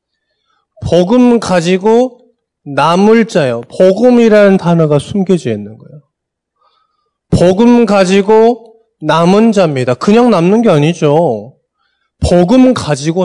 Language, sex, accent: Korean, male, native